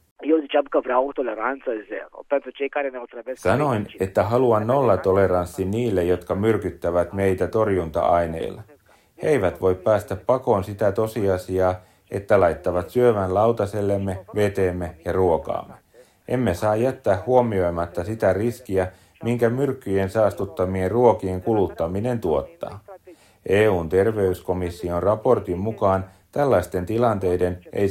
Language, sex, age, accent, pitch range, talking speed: Finnish, male, 30-49, native, 90-115 Hz, 90 wpm